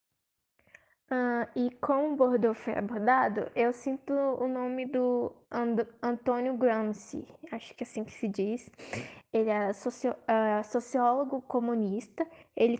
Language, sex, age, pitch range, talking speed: Persian, female, 10-29, 225-260 Hz, 135 wpm